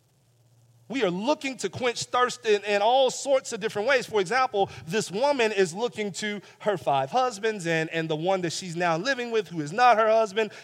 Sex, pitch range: male, 125-200 Hz